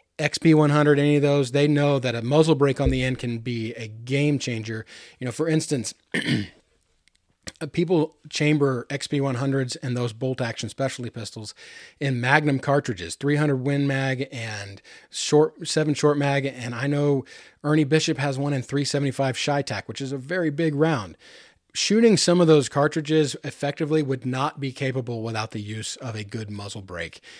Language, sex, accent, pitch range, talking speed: English, male, American, 130-155 Hz, 165 wpm